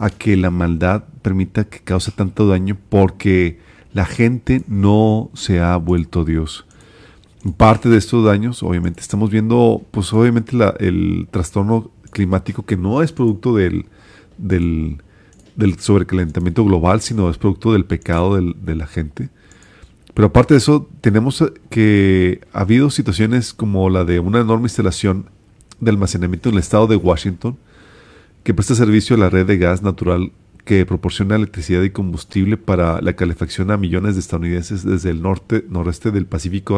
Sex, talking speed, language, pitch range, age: male, 160 wpm, Spanish, 90-110 Hz, 40-59